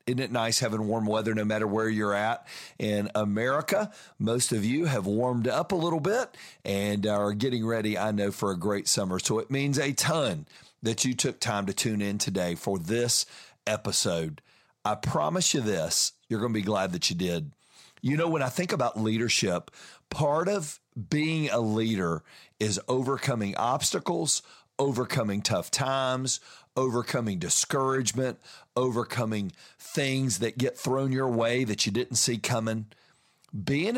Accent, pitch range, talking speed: American, 105-130 Hz, 165 wpm